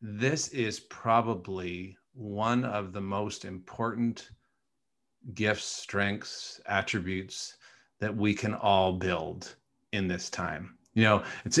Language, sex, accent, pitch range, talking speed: English, male, American, 95-115 Hz, 115 wpm